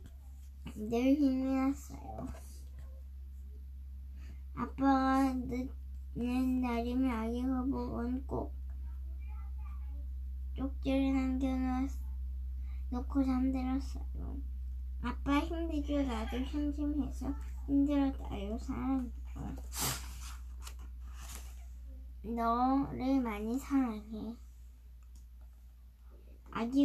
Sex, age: male, 10-29